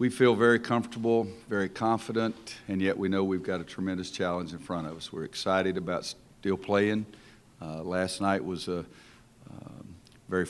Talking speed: 175 wpm